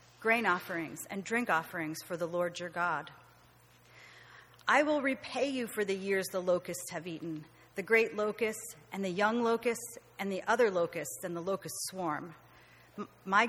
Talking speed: 165 wpm